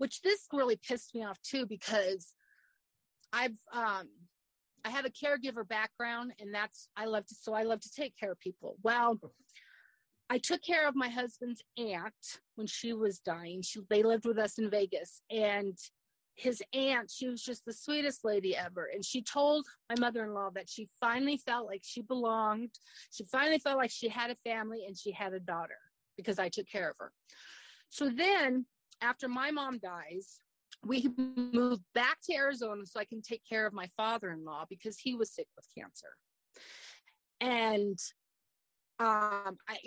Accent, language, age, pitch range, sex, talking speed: American, English, 40-59, 210-255 Hz, female, 175 wpm